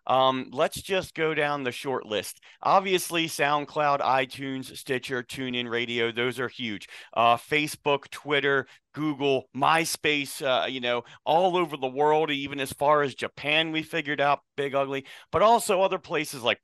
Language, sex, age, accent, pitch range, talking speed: English, male, 40-59, American, 130-165 Hz, 155 wpm